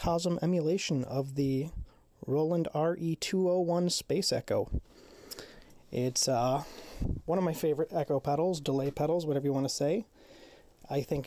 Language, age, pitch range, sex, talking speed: English, 30-49, 135-160 Hz, male, 130 wpm